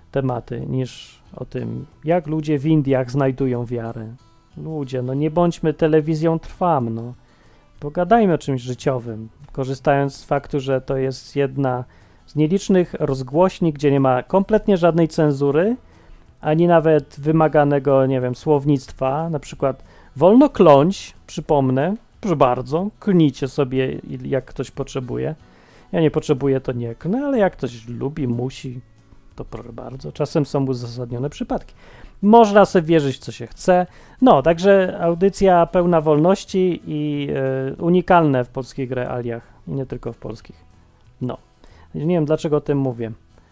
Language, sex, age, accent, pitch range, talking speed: Polish, male, 40-59, native, 125-170 Hz, 140 wpm